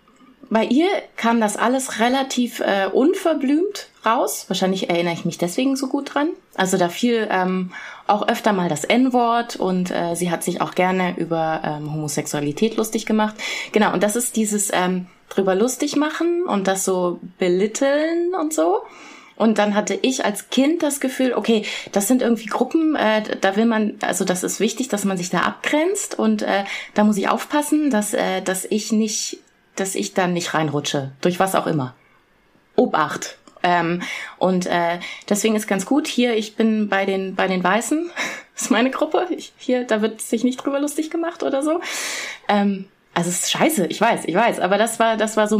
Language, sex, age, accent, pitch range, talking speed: German, female, 20-39, German, 180-250 Hz, 190 wpm